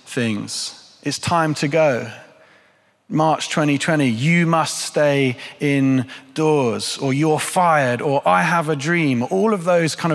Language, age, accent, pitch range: English, 30-49, British, 125-155 Hz